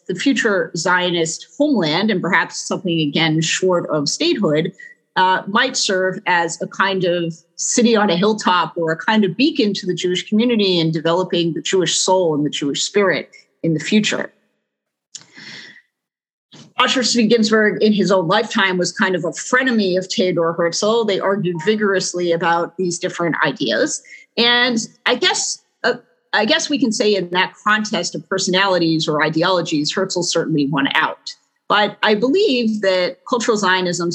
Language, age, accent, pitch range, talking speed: English, 40-59, American, 170-225 Hz, 160 wpm